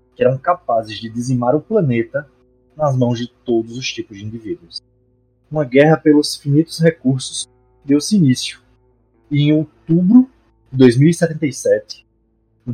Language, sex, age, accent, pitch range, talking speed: Portuguese, male, 20-39, Brazilian, 110-145 Hz, 130 wpm